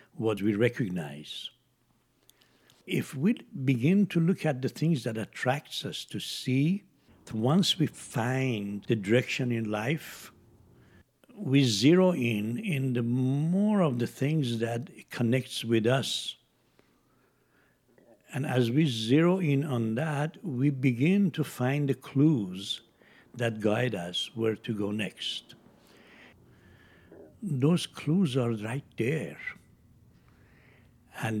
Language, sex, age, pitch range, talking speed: English, male, 60-79, 115-155 Hz, 120 wpm